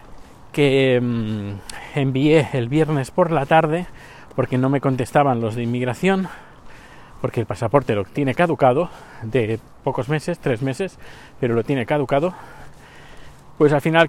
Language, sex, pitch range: Spanish, male, 120-155 Hz